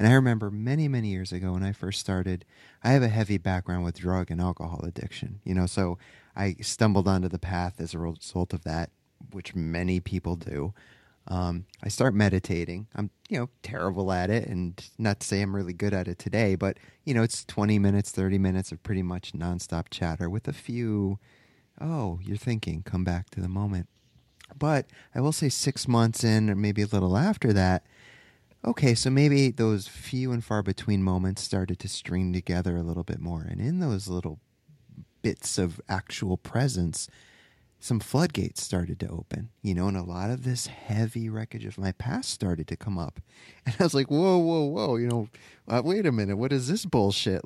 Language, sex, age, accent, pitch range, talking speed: English, male, 30-49, American, 90-120 Hz, 200 wpm